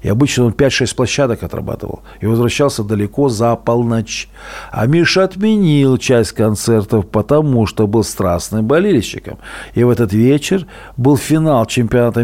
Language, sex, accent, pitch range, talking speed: Russian, male, native, 115-150 Hz, 135 wpm